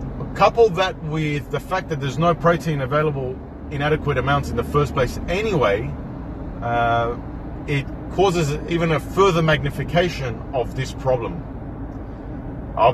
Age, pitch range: 30-49, 125-155 Hz